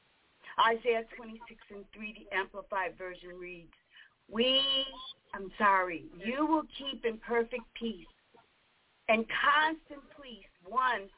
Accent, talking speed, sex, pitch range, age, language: American, 115 wpm, female, 200-285 Hz, 50-69, English